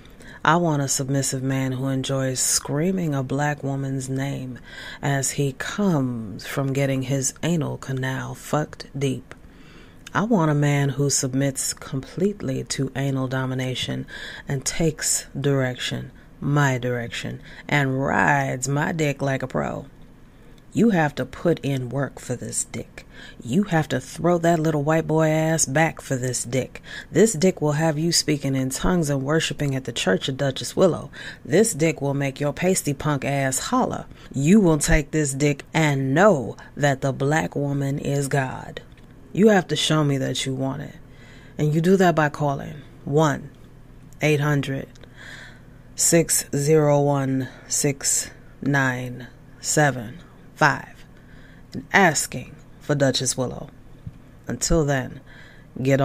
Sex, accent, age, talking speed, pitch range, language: female, American, 30-49, 135 wpm, 130-150 Hz, English